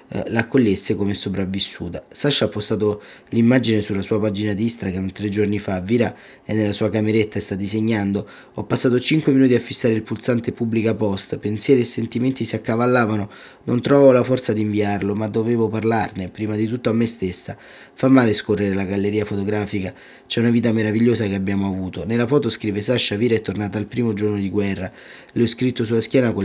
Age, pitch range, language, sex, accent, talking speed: 20-39, 100-115 Hz, Italian, male, native, 190 wpm